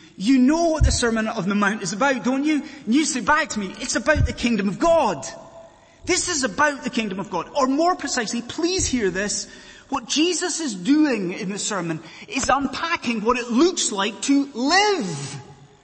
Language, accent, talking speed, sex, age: English, British, 195 wpm, male, 30-49